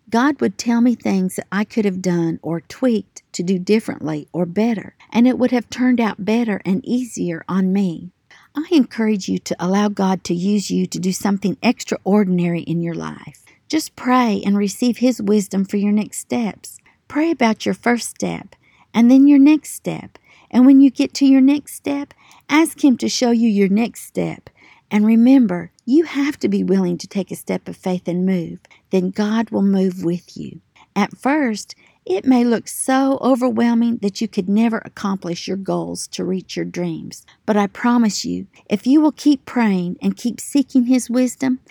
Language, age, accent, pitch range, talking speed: English, 50-69, American, 185-250 Hz, 190 wpm